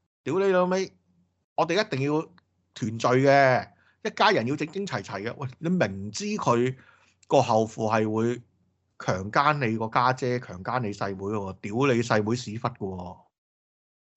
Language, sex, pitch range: Chinese, male, 100-140 Hz